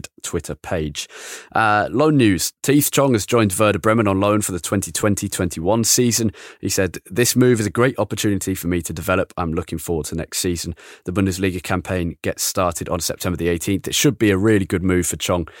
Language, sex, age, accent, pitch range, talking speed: English, male, 20-39, British, 90-110 Hz, 210 wpm